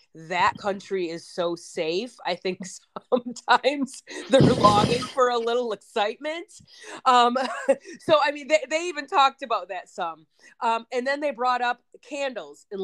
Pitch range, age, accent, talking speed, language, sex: 160-210 Hz, 30-49, American, 155 wpm, English, female